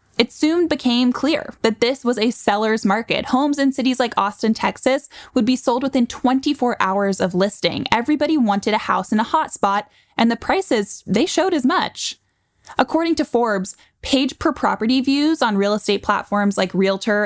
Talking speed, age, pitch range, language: 180 wpm, 10-29, 200-255 Hz, English